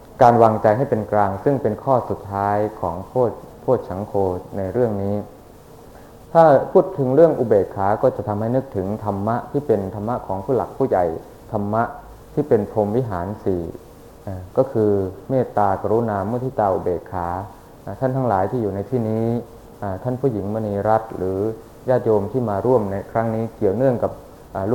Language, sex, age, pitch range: Thai, male, 20-39, 100-125 Hz